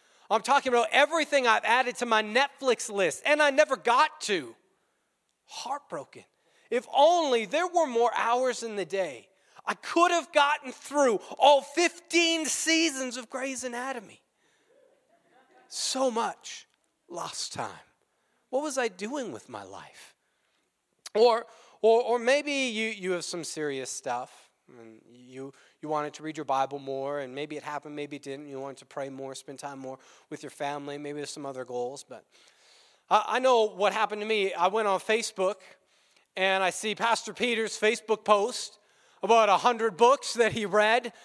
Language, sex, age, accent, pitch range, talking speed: English, male, 30-49, American, 180-265 Hz, 165 wpm